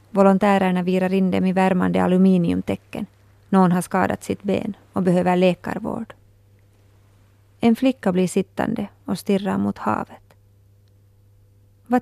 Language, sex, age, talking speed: Swedish, female, 30-49, 120 wpm